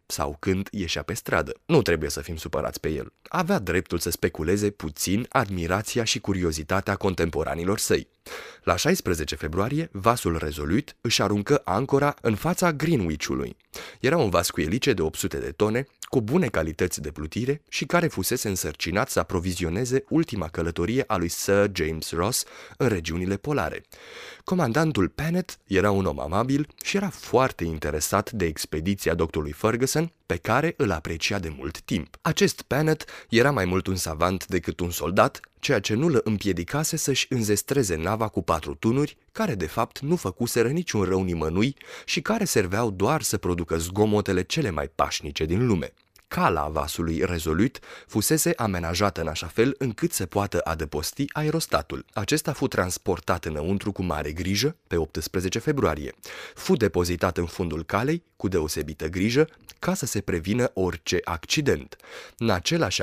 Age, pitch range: 20-39, 85-135 Hz